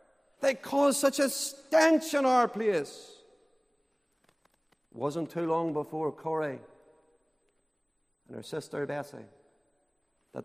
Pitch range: 160-260 Hz